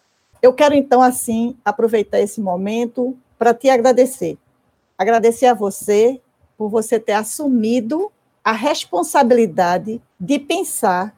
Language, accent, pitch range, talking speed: Portuguese, Brazilian, 215-275 Hz, 115 wpm